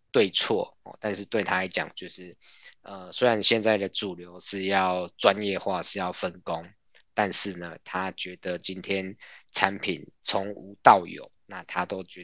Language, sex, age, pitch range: Chinese, male, 20-39, 90-100 Hz